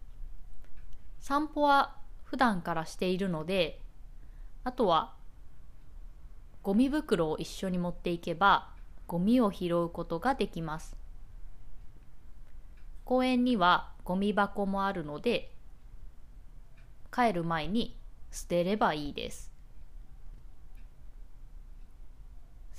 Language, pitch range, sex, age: Japanese, 165-225 Hz, female, 20-39